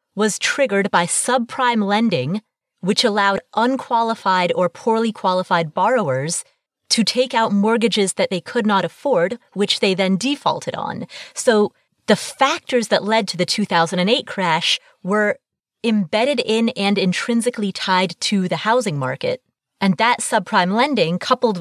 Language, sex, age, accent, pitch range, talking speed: English, female, 30-49, American, 180-235 Hz, 140 wpm